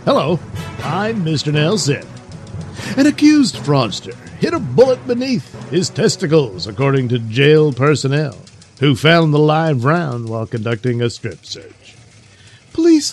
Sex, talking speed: male, 130 wpm